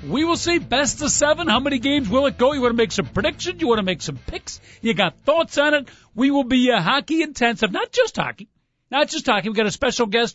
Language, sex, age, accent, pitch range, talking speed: English, male, 50-69, American, 195-265 Hz, 265 wpm